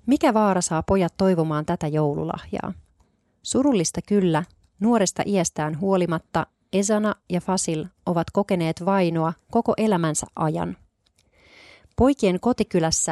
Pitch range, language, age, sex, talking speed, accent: 160-195 Hz, Finnish, 30-49, female, 105 wpm, native